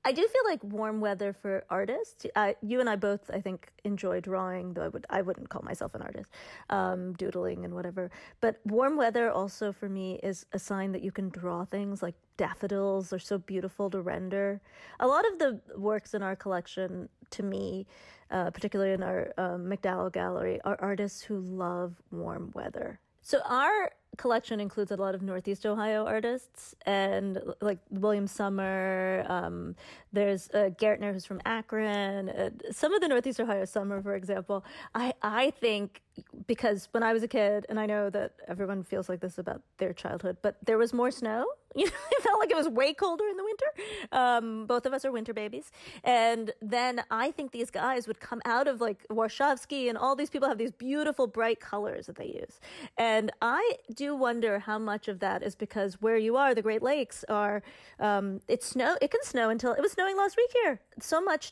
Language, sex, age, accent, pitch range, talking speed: English, female, 30-49, American, 195-245 Hz, 200 wpm